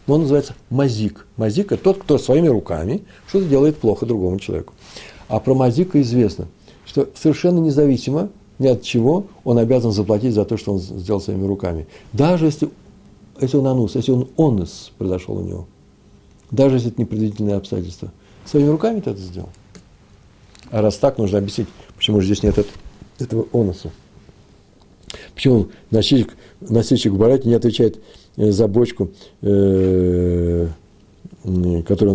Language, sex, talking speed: Russian, male, 145 wpm